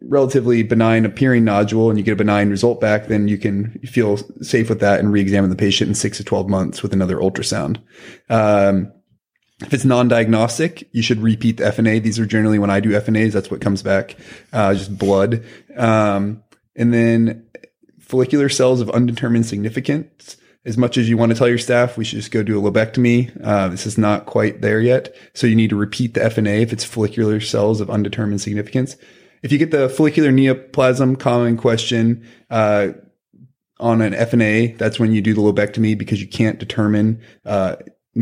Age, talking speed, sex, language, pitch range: 30-49, 190 wpm, male, English, 105-120 Hz